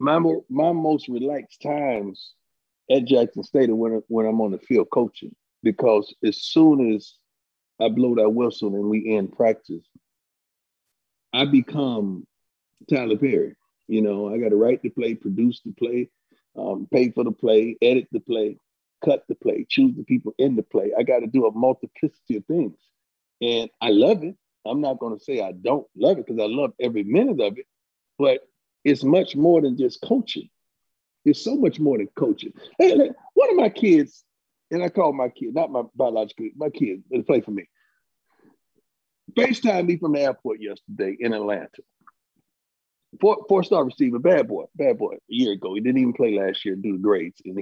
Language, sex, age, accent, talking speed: English, male, 50-69, American, 190 wpm